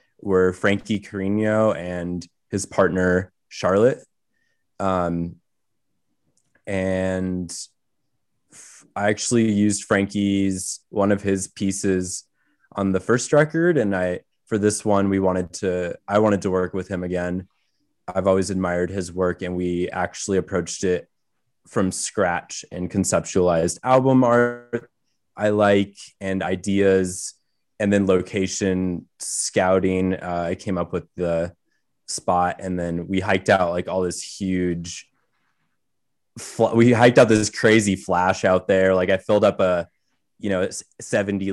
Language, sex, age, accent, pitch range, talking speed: English, male, 20-39, American, 90-100 Hz, 135 wpm